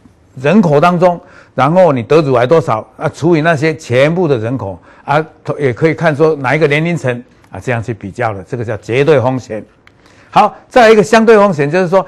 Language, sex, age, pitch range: Chinese, male, 60-79, 120-160 Hz